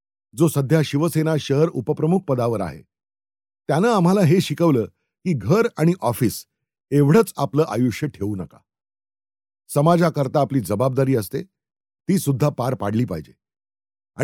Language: Marathi